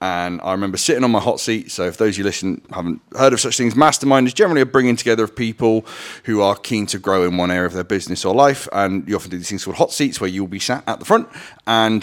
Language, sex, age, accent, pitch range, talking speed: English, male, 30-49, British, 95-125 Hz, 280 wpm